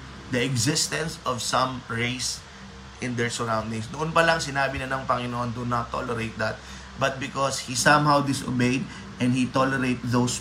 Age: 20-39